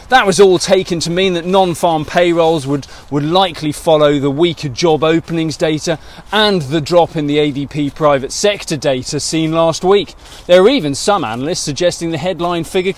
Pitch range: 150-195 Hz